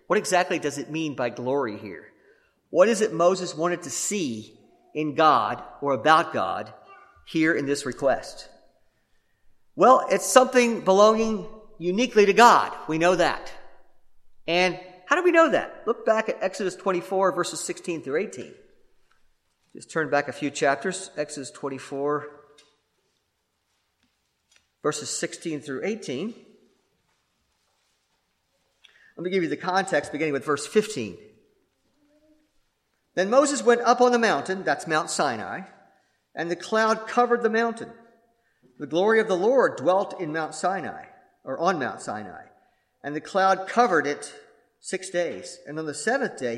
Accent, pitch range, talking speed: American, 150-220 Hz, 145 wpm